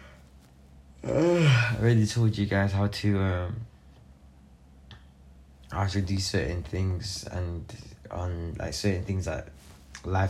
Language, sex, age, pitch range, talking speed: English, male, 20-39, 70-100 Hz, 115 wpm